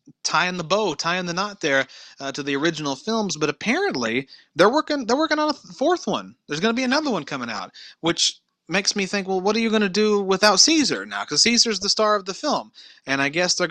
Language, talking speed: English, 250 wpm